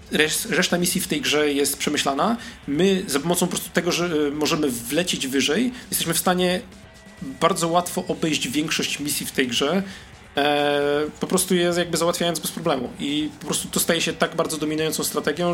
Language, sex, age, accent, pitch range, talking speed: Polish, male, 40-59, native, 140-180 Hz, 175 wpm